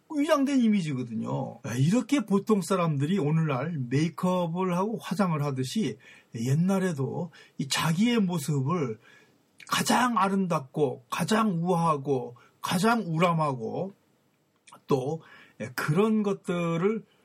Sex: male